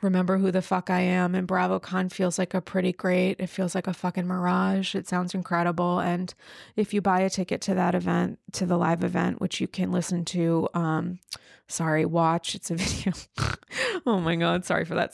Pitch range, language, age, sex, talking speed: 185-245 Hz, English, 20-39, female, 210 wpm